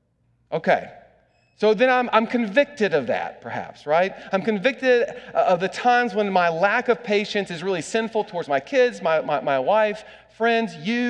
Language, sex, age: English, male, 40-59